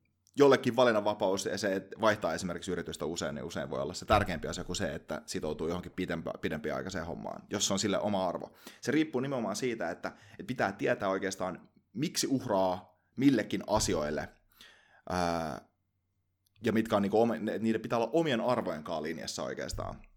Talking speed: 150 wpm